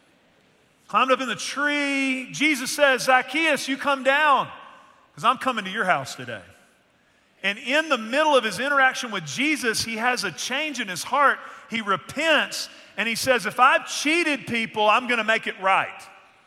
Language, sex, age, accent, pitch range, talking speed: English, male, 40-59, American, 190-270 Hz, 175 wpm